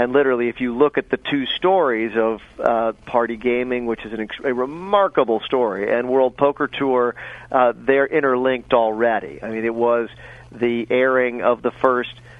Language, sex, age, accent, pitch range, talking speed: English, male, 40-59, American, 115-135 Hz, 170 wpm